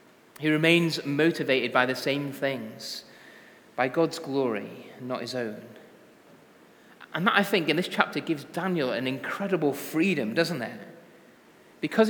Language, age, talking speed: English, 30-49, 140 wpm